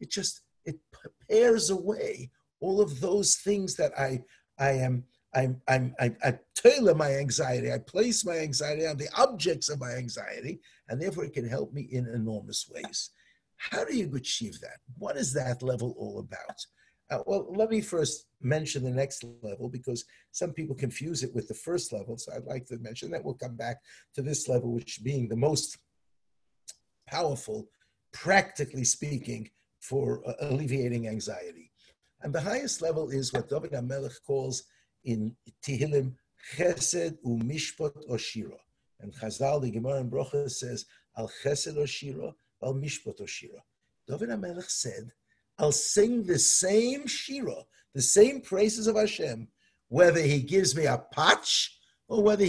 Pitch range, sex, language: 125-175 Hz, male, English